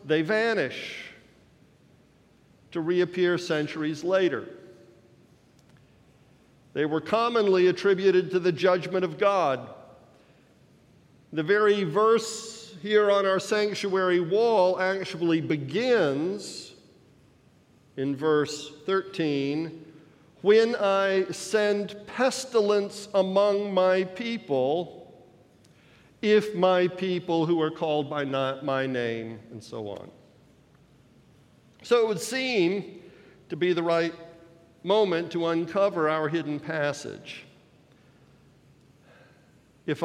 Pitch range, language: 150-190 Hz, English